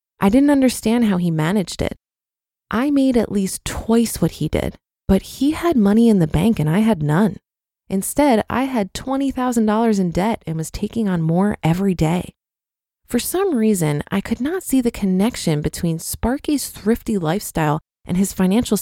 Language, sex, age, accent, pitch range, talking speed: English, female, 20-39, American, 175-235 Hz, 175 wpm